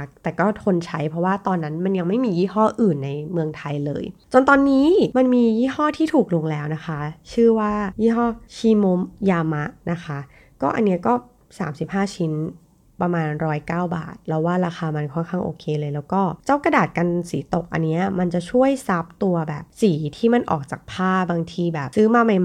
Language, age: Thai, 20-39